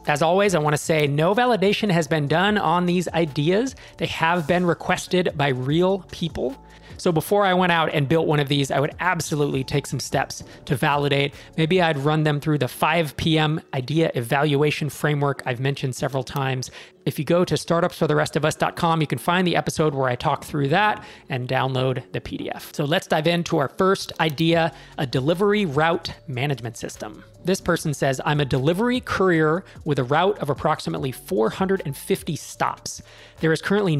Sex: male